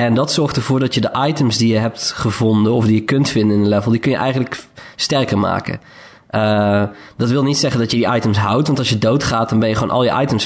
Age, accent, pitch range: 20-39, Dutch, 110-125 Hz